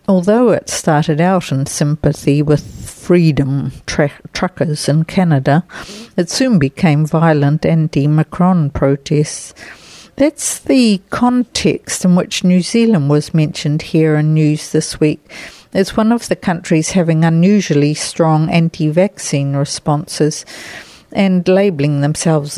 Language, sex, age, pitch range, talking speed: English, female, 60-79, 150-185 Hz, 115 wpm